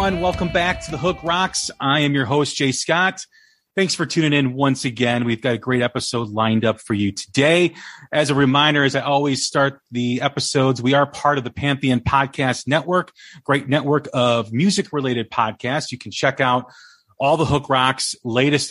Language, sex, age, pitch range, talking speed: English, male, 30-49, 120-160 Hz, 190 wpm